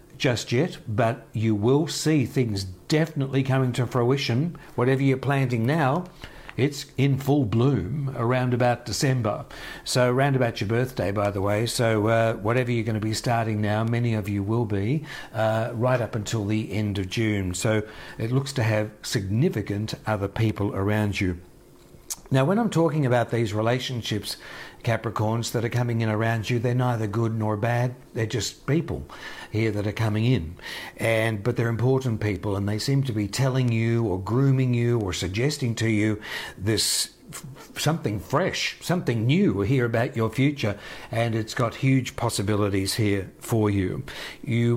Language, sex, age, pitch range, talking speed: English, male, 60-79, 110-130 Hz, 170 wpm